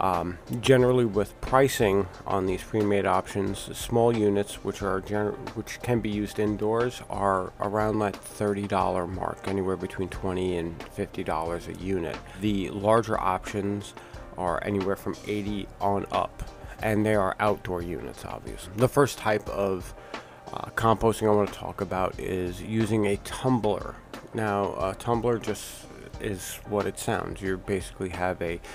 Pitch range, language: 95-110 Hz, English